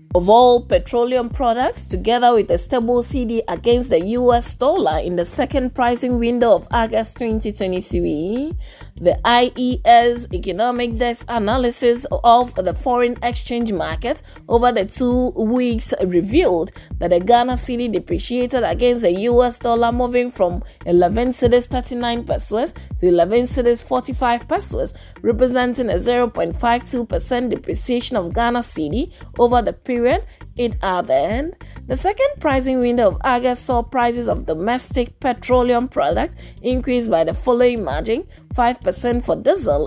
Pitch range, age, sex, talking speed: 235-250 Hz, 20-39, female, 135 wpm